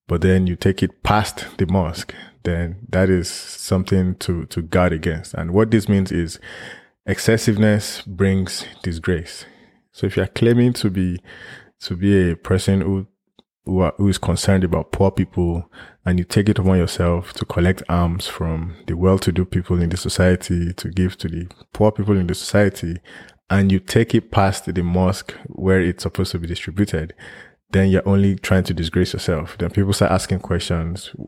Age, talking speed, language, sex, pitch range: 20-39, 180 wpm, English, male, 85-100 Hz